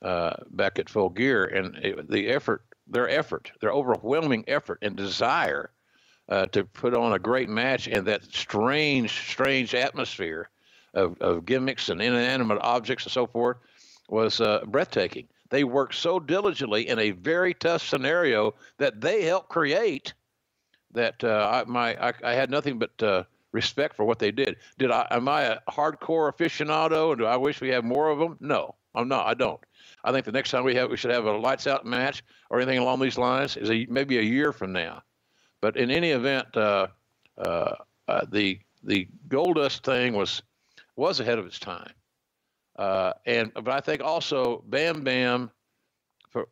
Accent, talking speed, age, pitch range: American, 180 wpm, 60-79, 115-135 Hz